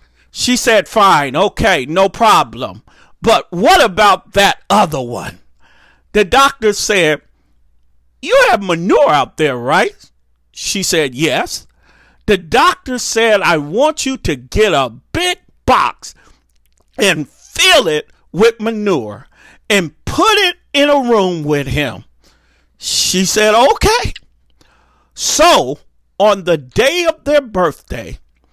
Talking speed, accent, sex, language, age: 120 wpm, American, male, English, 40-59